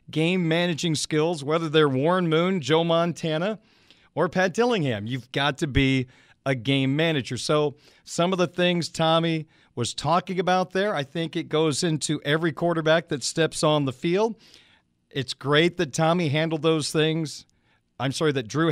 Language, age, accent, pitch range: English, 40-59, American, 140-170 Hz